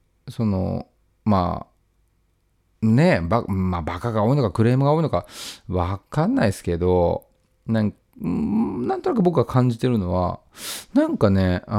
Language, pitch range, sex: Japanese, 95-130 Hz, male